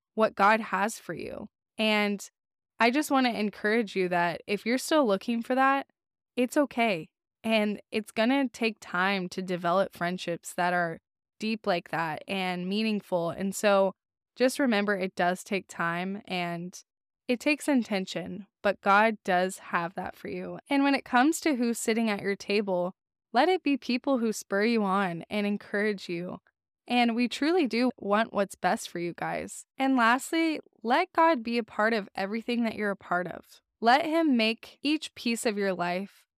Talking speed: 180 wpm